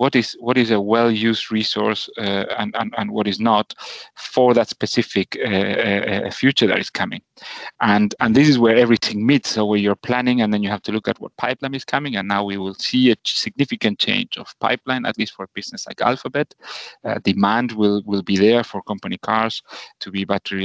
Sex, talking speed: male, 215 wpm